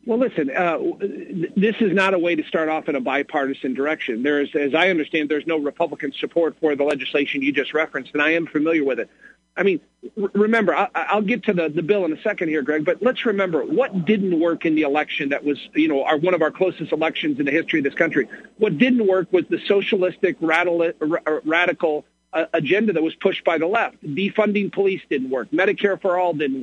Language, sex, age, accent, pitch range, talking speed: English, male, 50-69, American, 155-200 Hz, 220 wpm